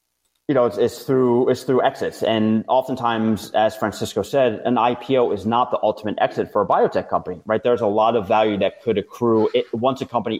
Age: 30-49